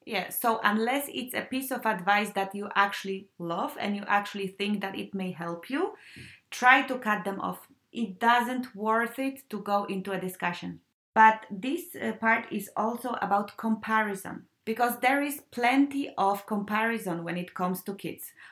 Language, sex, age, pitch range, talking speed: English, female, 30-49, 210-265 Hz, 175 wpm